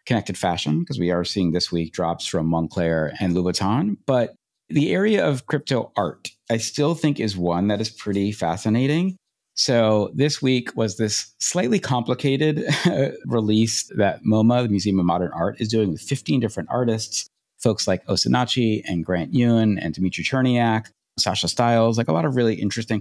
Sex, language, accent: male, English, American